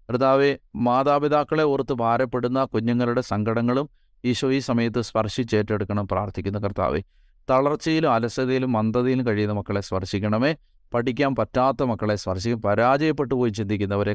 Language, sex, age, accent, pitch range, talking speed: Malayalam, male, 30-49, native, 100-125 Hz, 95 wpm